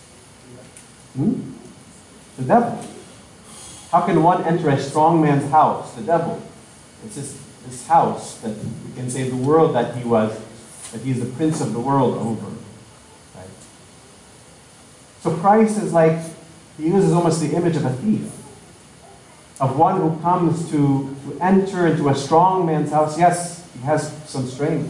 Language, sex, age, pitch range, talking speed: English, male, 40-59, 130-170 Hz, 155 wpm